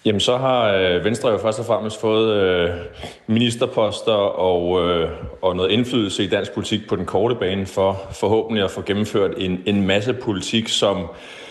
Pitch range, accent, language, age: 90-110 Hz, native, Danish, 30-49